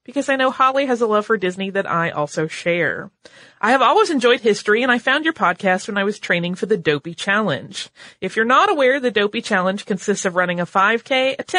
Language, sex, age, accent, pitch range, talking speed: English, female, 30-49, American, 190-260 Hz, 230 wpm